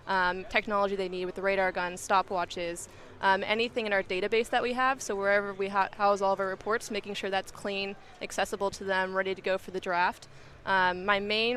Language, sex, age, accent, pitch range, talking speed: English, female, 20-39, American, 185-205 Hz, 215 wpm